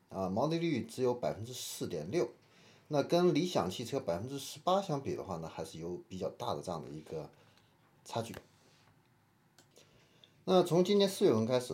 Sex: male